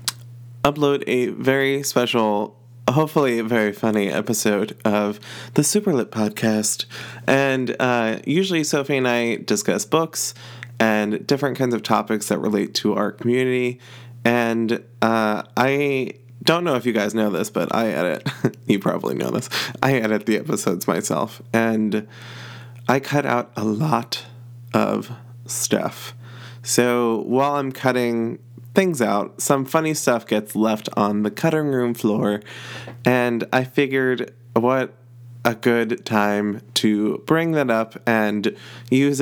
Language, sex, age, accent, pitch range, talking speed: English, male, 20-39, American, 110-130 Hz, 135 wpm